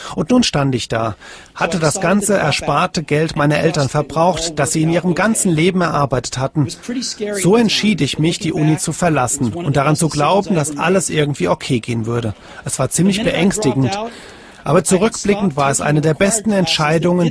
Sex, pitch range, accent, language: male, 145-190 Hz, German, German